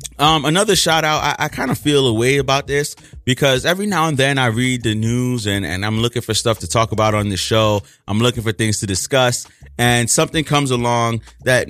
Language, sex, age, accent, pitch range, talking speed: English, male, 30-49, American, 95-130 Hz, 230 wpm